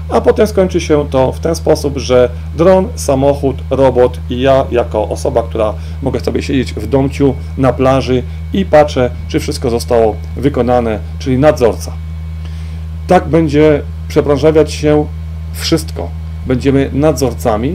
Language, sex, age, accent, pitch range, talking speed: Polish, male, 40-59, native, 80-130 Hz, 130 wpm